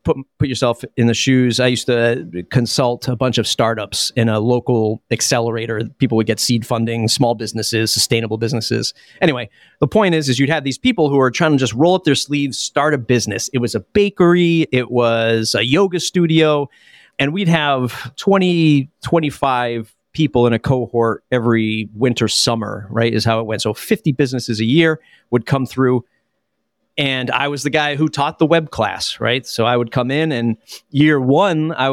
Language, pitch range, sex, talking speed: English, 115-155 Hz, male, 190 wpm